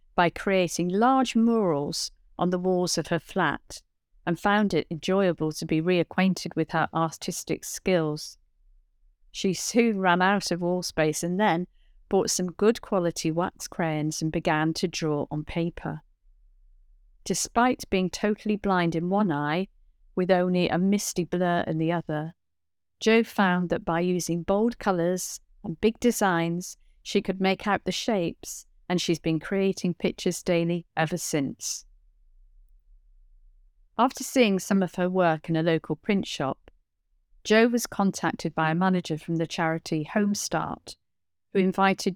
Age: 50-69